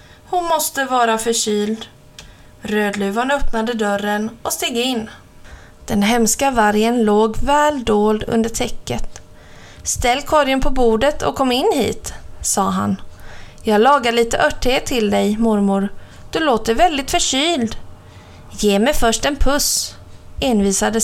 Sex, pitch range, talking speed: female, 205-275 Hz, 130 wpm